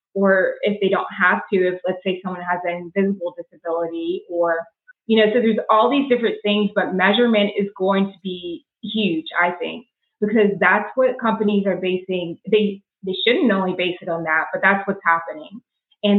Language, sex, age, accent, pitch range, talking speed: English, female, 20-39, American, 175-210 Hz, 190 wpm